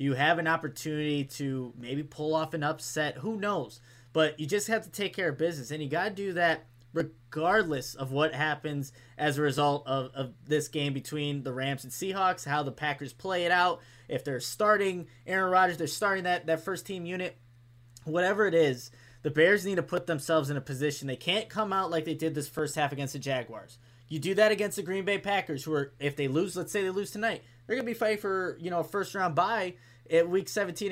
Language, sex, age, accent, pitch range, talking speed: English, male, 20-39, American, 135-180 Hz, 225 wpm